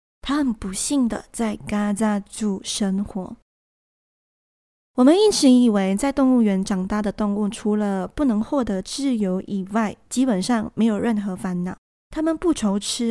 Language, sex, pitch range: Chinese, female, 205-255 Hz